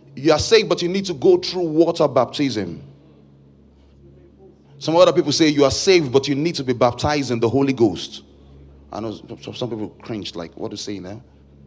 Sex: male